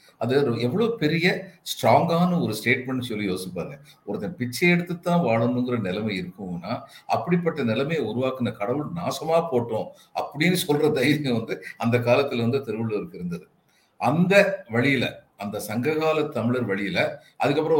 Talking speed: 125 wpm